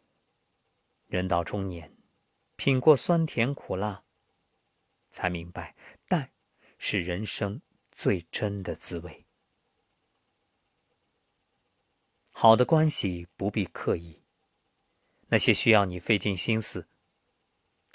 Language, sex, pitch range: Chinese, male, 95-135 Hz